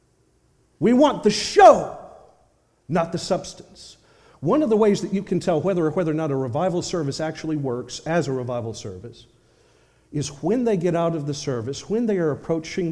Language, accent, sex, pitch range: English, American, male, 115-170 Hz